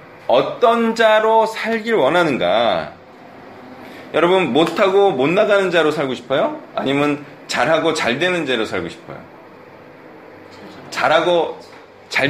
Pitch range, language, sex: 120-190 Hz, Korean, male